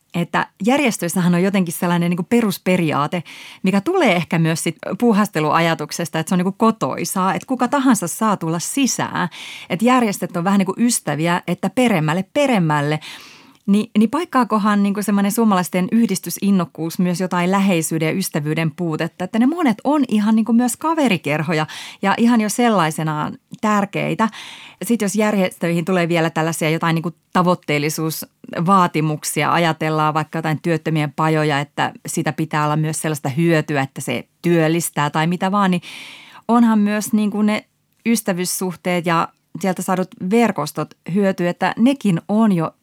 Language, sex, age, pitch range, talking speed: Finnish, female, 30-49, 160-210 Hz, 145 wpm